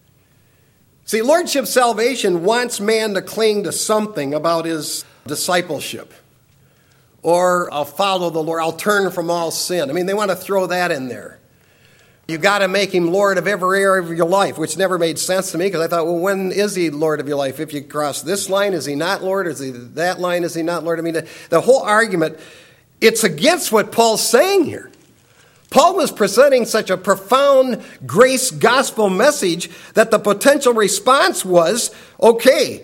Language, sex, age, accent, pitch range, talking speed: English, male, 50-69, American, 165-230 Hz, 190 wpm